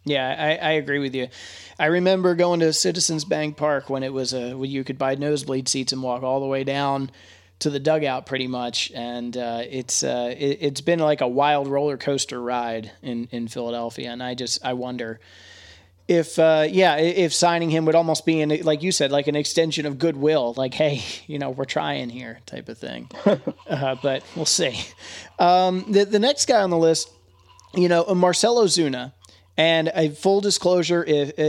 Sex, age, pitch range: male, 30-49, 125-160 Hz